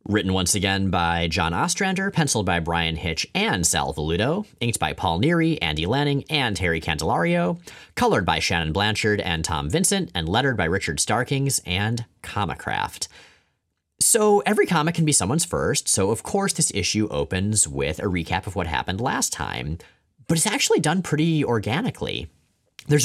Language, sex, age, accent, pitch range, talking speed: English, male, 30-49, American, 85-140 Hz, 165 wpm